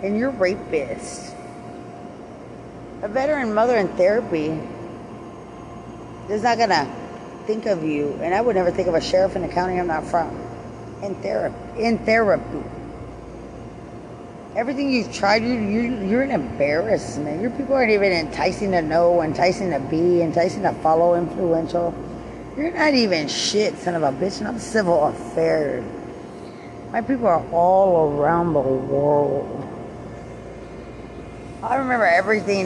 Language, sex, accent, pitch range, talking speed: English, female, American, 165-210 Hz, 140 wpm